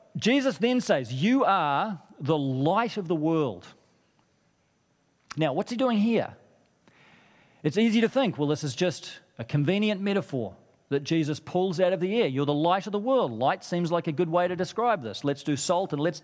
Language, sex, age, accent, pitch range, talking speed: English, male, 40-59, Australian, 140-190 Hz, 195 wpm